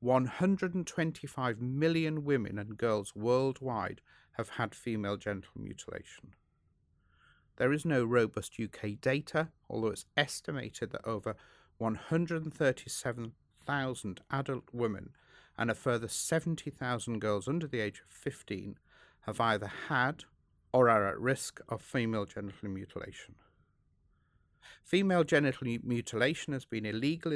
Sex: male